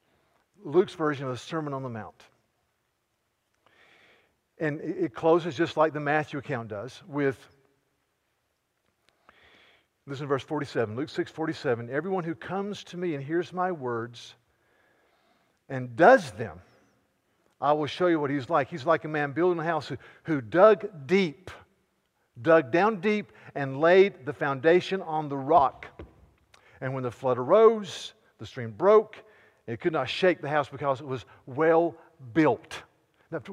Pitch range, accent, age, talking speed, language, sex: 130-175 Hz, American, 50-69, 150 wpm, English, male